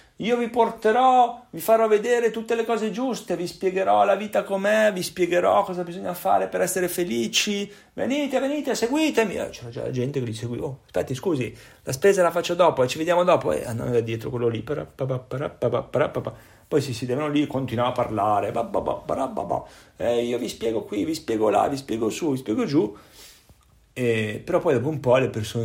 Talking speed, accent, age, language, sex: 185 wpm, native, 40-59, Italian, male